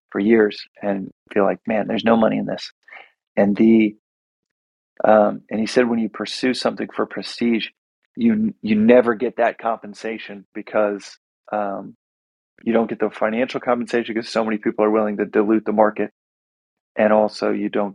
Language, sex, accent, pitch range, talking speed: English, male, American, 105-120 Hz, 170 wpm